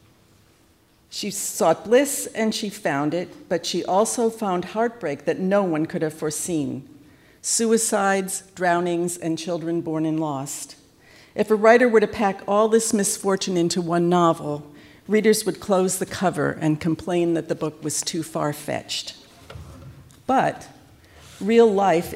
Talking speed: 145 wpm